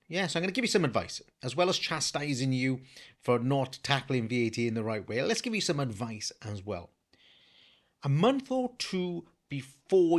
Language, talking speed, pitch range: English, 200 wpm, 120-175 Hz